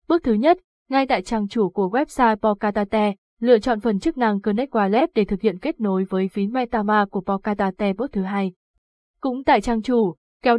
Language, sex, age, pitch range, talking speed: Vietnamese, female, 20-39, 205-245 Hz, 200 wpm